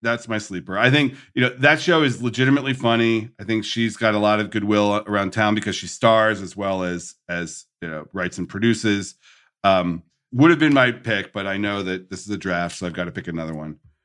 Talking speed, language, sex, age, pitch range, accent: 235 wpm, English, male, 40-59, 100-125 Hz, American